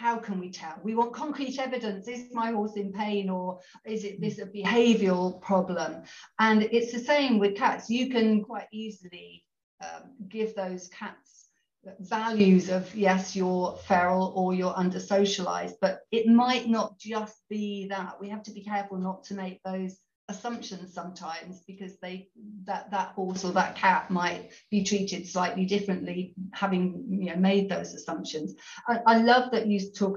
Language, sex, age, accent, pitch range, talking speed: English, female, 40-59, British, 185-215 Hz, 170 wpm